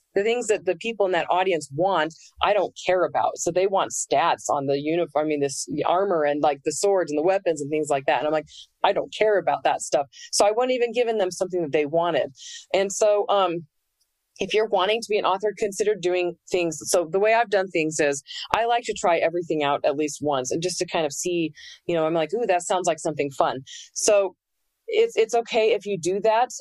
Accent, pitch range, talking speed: American, 160-215 Hz, 245 wpm